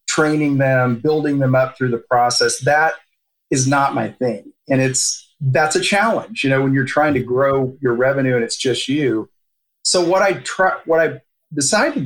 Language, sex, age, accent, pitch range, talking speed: English, male, 40-59, American, 125-160 Hz, 190 wpm